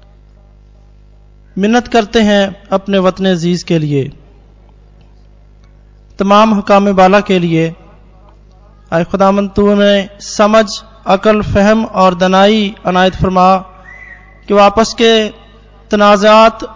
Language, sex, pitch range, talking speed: Hindi, male, 165-215 Hz, 100 wpm